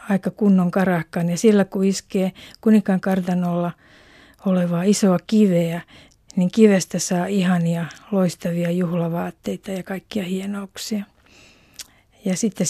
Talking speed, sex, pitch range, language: 110 wpm, female, 185-210 Hz, Finnish